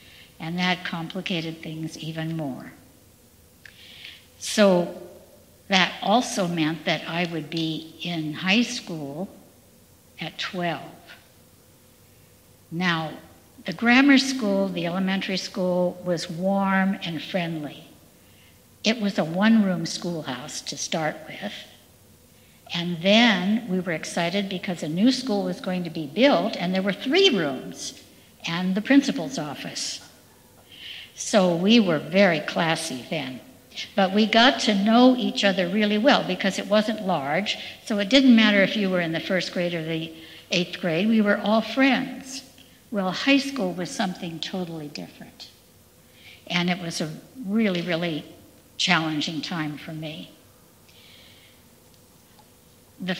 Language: English